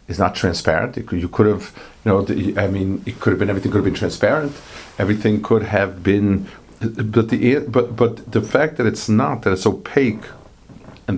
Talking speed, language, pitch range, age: 200 wpm, English, 95-120 Hz, 50-69